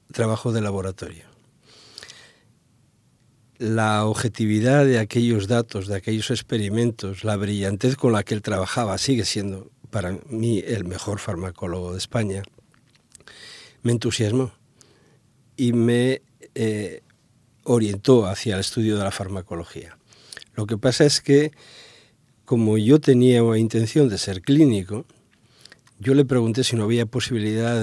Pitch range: 110-130 Hz